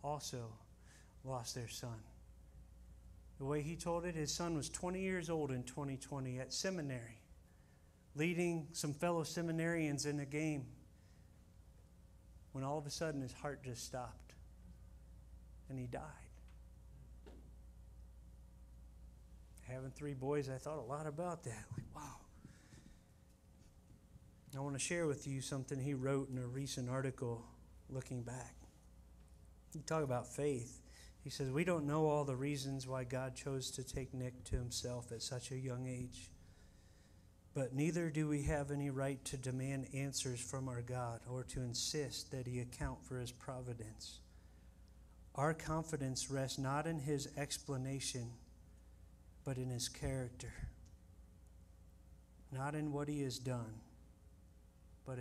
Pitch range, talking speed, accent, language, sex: 90-140 Hz, 140 wpm, American, English, male